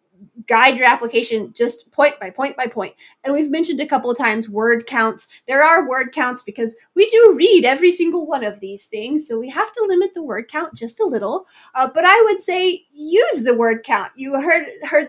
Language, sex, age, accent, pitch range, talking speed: English, female, 20-39, American, 230-305 Hz, 220 wpm